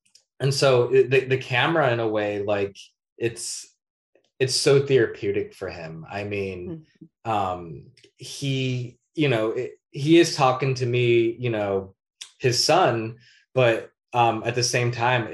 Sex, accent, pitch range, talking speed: male, American, 110-130 Hz, 145 wpm